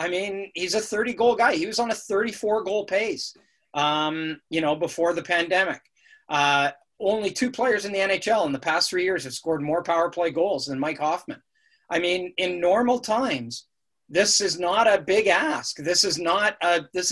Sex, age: male, 30-49